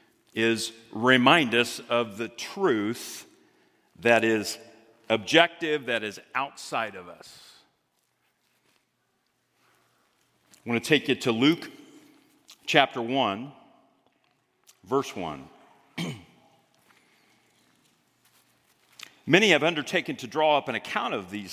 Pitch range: 115-170 Hz